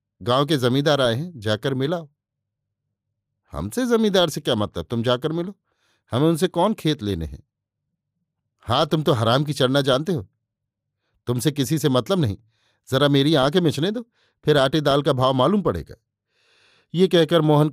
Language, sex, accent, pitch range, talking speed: Hindi, male, native, 110-150 Hz, 165 wpm